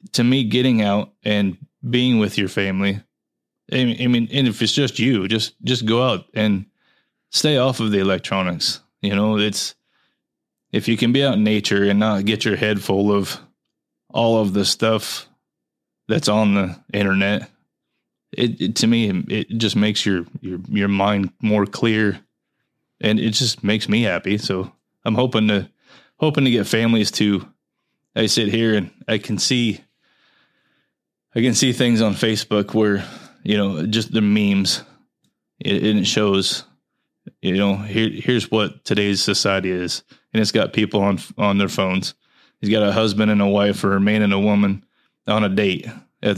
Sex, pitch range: male, 100-115 Hz